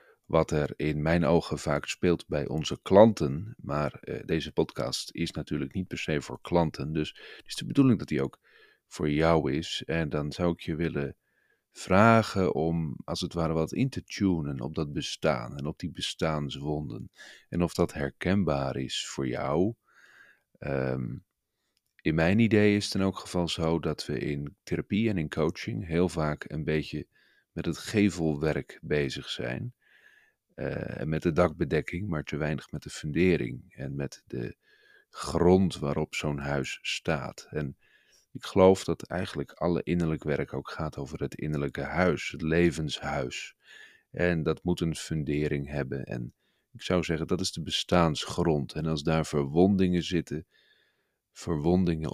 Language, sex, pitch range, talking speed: Dutch, male, 75-90 Hz, 160 wpm